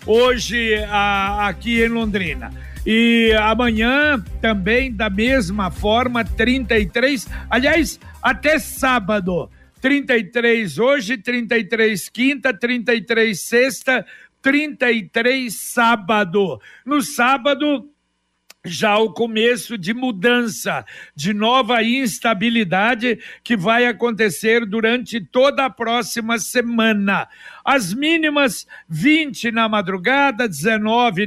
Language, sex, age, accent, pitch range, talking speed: Portuguese, male, 60-79, Brazilian, 215-245 Hz, 90 wpm